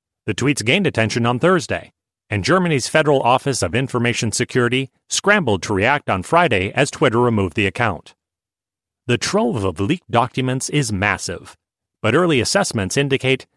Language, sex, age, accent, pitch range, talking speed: English, male, 40-59, American, 105-150 Hz, 150 wpm